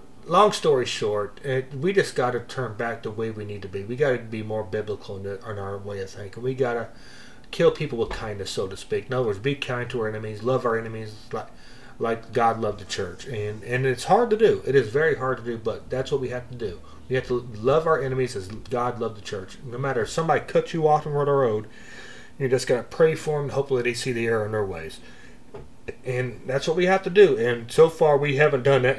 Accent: American